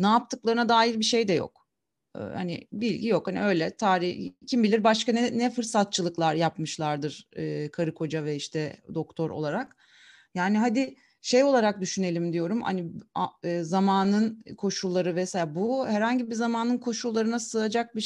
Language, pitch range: Turkish, 170-220 Hz